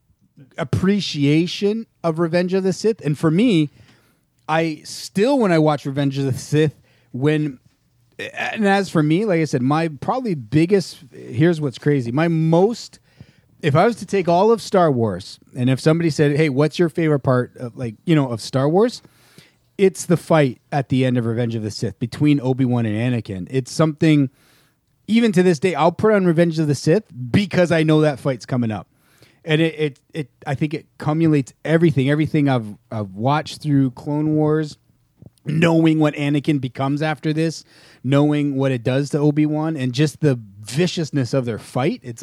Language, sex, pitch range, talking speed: English, male, 125-160 Hz, 185 wpm